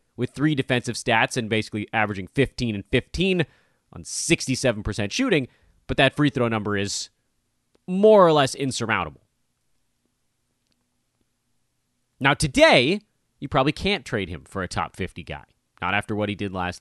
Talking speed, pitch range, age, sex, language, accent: 145 wpm, 110-175 Hz, 30-49, male, English, American